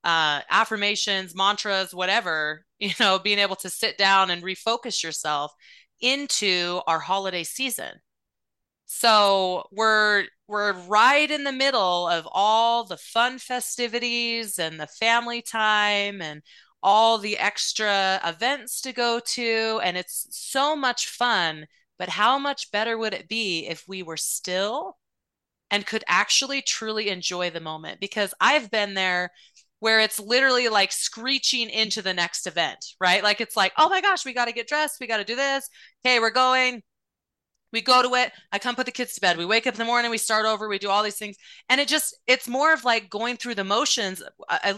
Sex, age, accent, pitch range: female, 30-49, American, 190-240 Hz